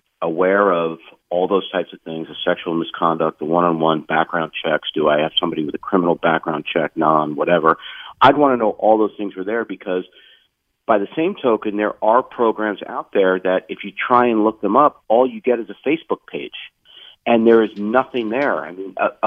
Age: 40-59